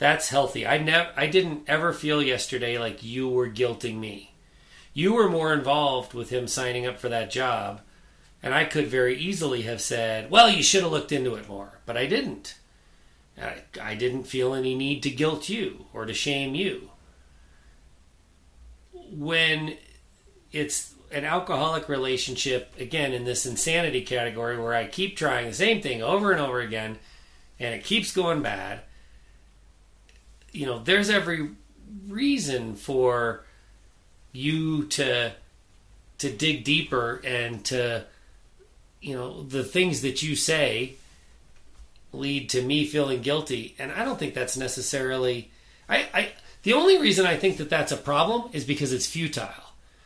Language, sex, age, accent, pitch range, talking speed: English, male, 40-59, American, 115-150 Hz, 150 wpm